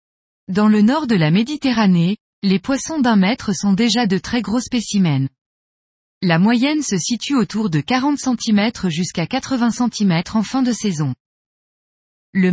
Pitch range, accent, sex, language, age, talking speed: 180-245 Hz, French, female, French, 20-39, 155 wpm